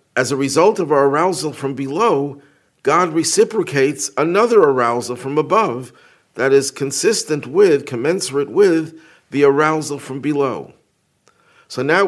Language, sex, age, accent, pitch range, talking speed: English, male, 50-69, American, 125-155 Hz, 130 wpm